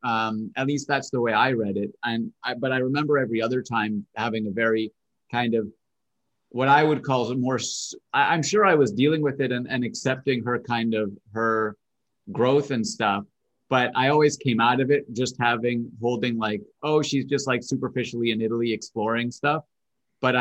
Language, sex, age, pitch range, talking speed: English, male, 30-49, 115-140 Hz, 190 wpm